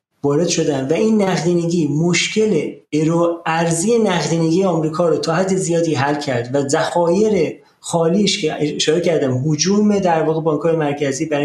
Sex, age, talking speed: male, 40-59, 140 wpm